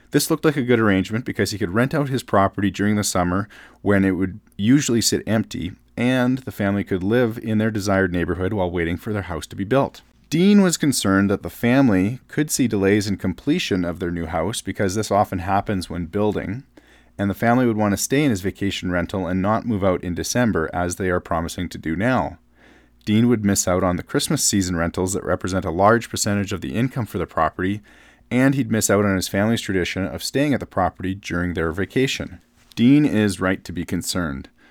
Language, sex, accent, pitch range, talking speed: English, male, American, 90-115 Hz, 220 wpm